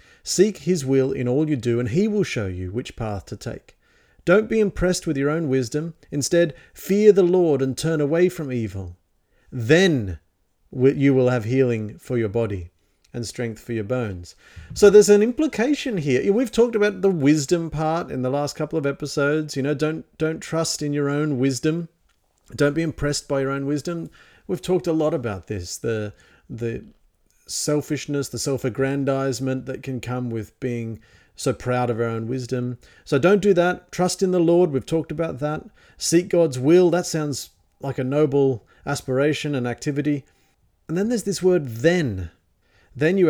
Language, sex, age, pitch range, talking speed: English, male, 40-59, 120-165 Hz, 180 wpm